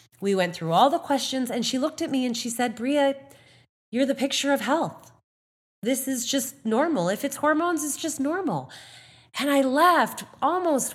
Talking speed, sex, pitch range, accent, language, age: 185 wpm, female, 175-260 Hz, American, English, 30-49